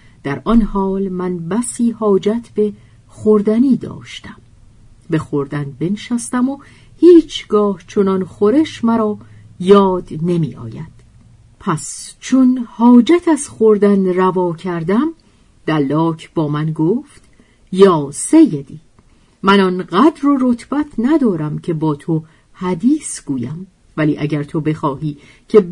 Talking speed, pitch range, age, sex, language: 115 wpm, 150-220 Hz, 50-69, female, Persian